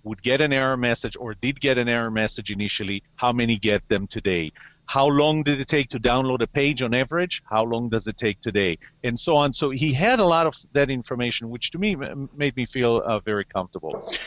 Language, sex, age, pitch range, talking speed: English, male, 40-59, 110-135 Hz, 225 wpm